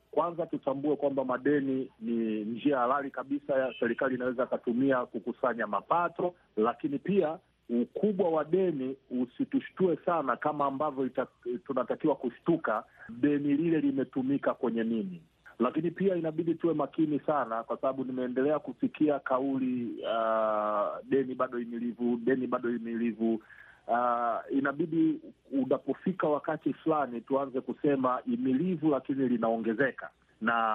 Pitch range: 125-170 Hz